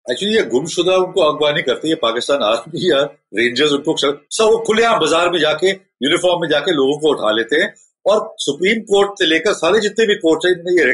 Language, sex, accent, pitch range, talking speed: Hindi, male, native, 140-200 Hz, 170 wpm